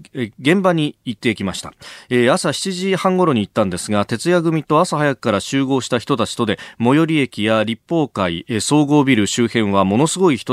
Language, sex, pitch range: Japanese, male, 105-145 Hz